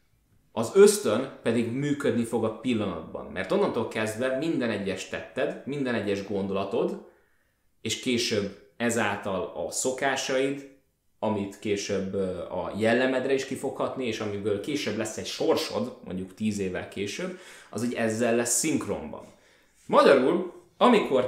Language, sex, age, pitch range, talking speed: Hungarian, male, 20-39, 105-125 Hz, 125 wpm